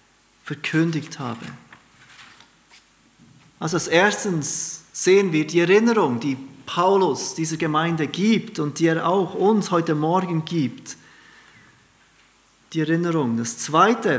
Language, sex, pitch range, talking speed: German, male, 145-185 Hz, 110 wpm